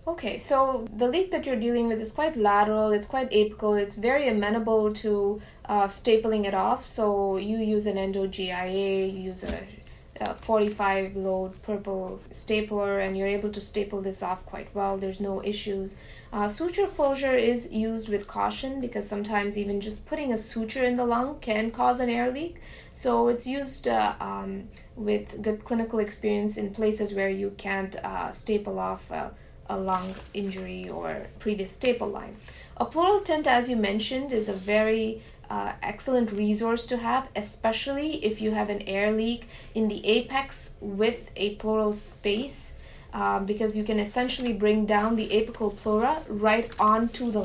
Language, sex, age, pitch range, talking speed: English, female, 20-39, 200-235 Hz, 170 wpm